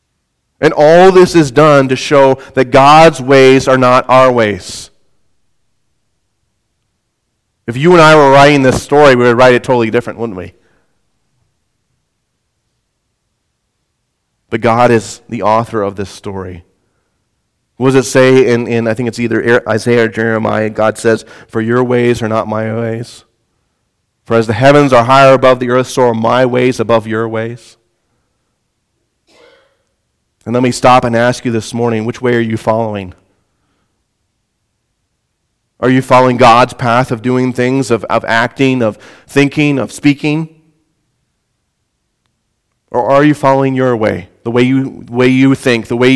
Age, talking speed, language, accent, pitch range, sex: 30-49, 155 wpm, English, American, 110-130 Hz, male